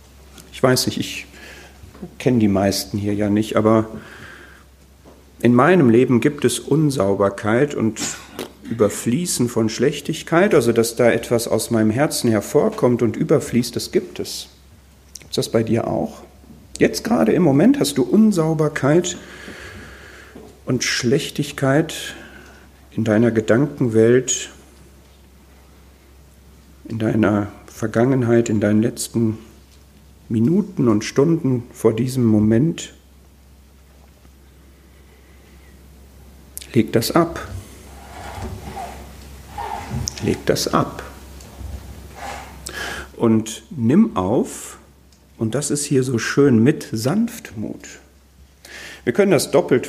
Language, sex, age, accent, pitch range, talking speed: German, male, 50-69, German, 75-120 Hz, 100 wpm